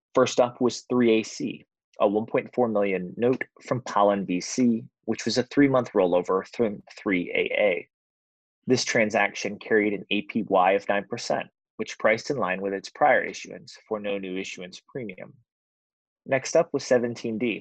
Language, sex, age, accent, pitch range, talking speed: English, male, 20-39, American, 100-125 Hz, 145 wpm